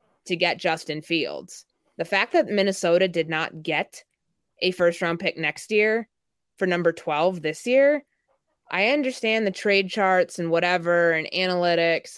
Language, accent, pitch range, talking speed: English, American, 160-185 Hz, 155 wpm